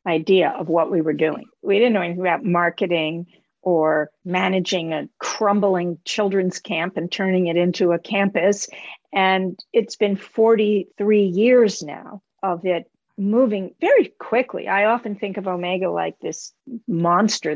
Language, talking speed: English, 145 wpm